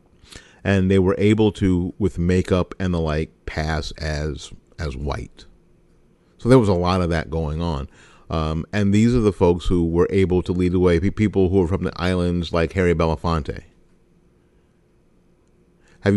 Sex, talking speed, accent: male, 170 wpm, American